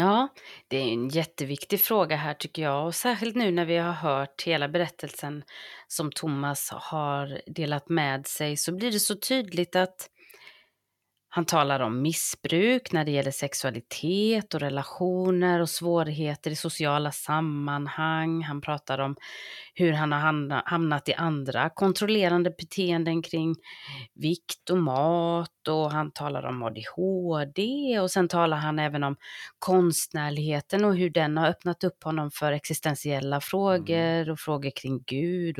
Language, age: English, 30-49